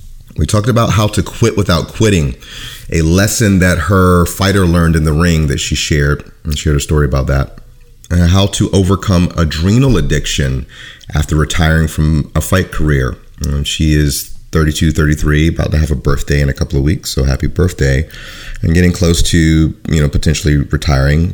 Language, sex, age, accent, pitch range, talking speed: English, male, 30-49, American, 75-95 Hz, 180 wpm